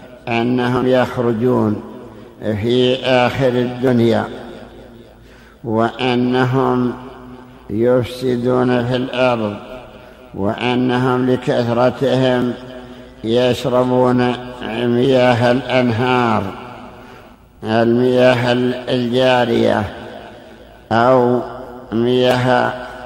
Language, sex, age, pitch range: Arabic, male, 60-79, 120-125 Hz